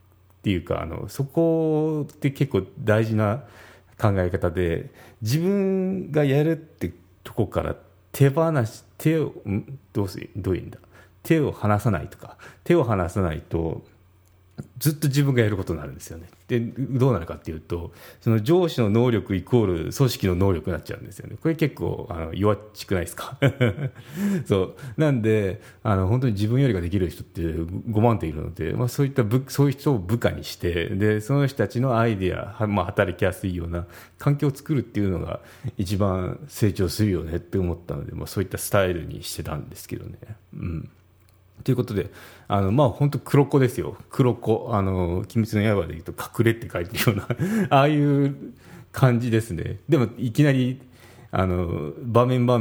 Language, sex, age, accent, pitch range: Japanese, male, 40-59, native, 90-130 Hz